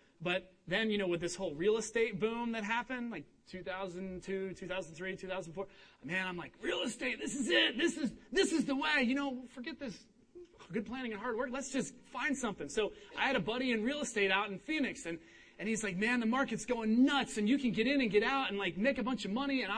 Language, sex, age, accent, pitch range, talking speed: English, male, 30-49, American, 170-235 Hz, 240 wpm